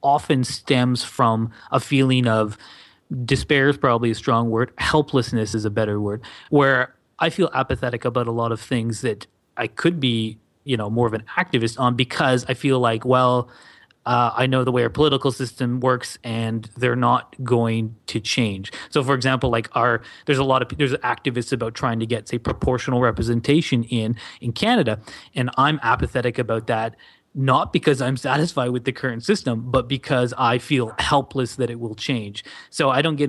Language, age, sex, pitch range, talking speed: English, 30-49, male, 115-140 Hz, 185 wpm